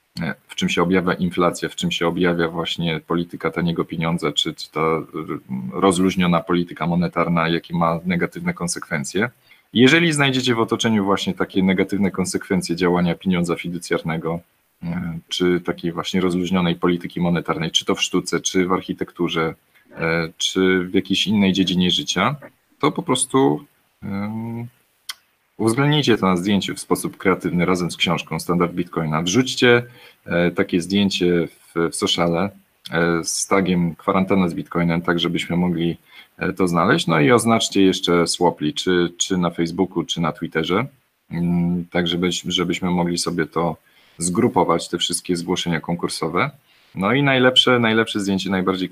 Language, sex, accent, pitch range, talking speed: Polish, male, native, 85-100 Hz, 135 wpm